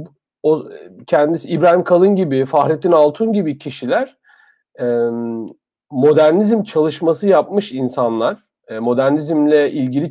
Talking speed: 100 wpm